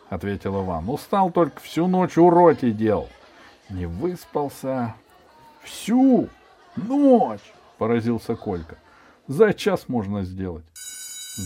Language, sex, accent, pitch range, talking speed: Russian, male, native, 105-170 Hz, 95 wpm